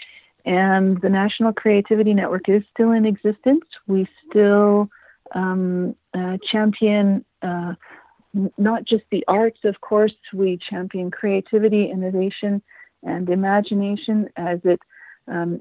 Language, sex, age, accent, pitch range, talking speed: English, female, 40-59, American, 185-215 Hz, 120 wpm